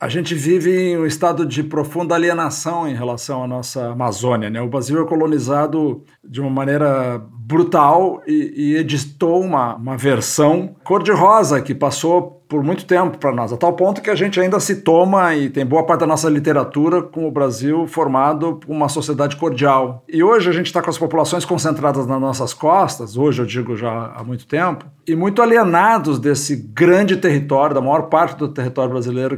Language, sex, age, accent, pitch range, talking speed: Portuguese, male, 50-69, Brazilian, 135-180 Hz, 190 wpm